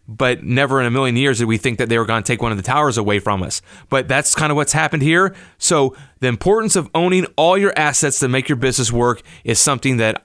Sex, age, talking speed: male, 30-49, 265 wpm